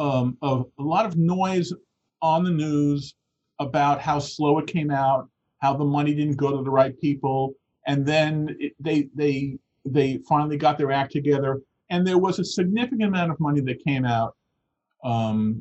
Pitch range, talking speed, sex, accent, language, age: 145-185 Hz, 180 wpm, male, American, English, 50-69